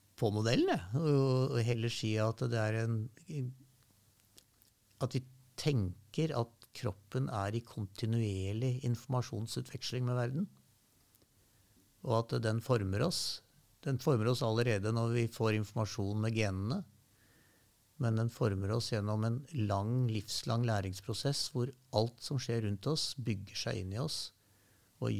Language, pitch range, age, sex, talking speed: English, 105-125 Hz, 60-79, male, 140 wpm